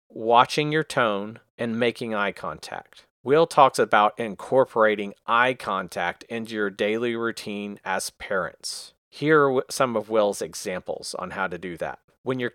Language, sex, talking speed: English, male, 155 wpm